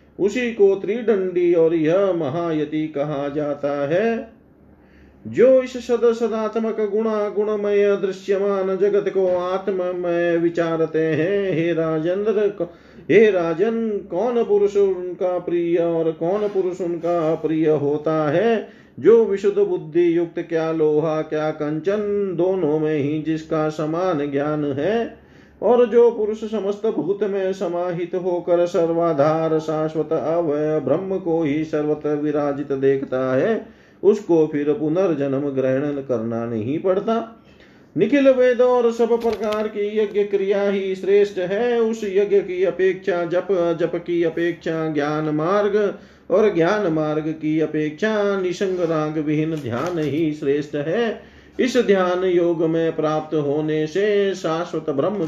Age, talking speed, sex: 40-59, 120 wpm, male